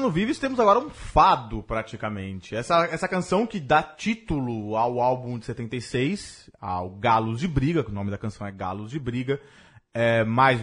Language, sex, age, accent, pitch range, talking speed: Portuguese, male, 20-39, Brazilian, 115-195 Hz, 180 wpm